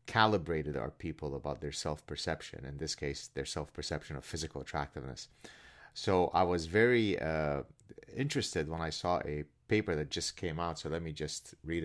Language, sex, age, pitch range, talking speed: English, male, 30-49, 75-95 Hz, 170 wpm